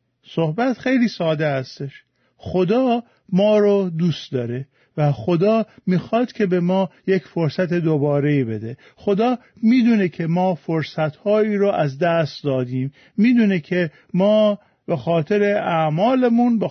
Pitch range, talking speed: 150-200 Hz, 130 wpm